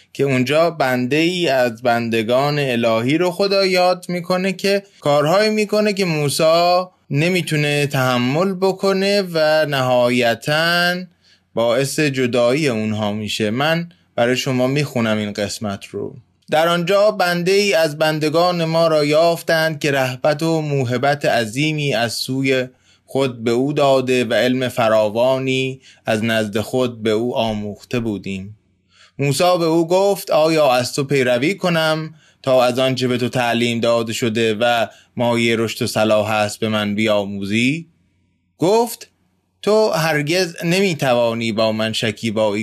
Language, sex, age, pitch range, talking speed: Persian, male, 20-39, 115-160 Hz, 135 wpm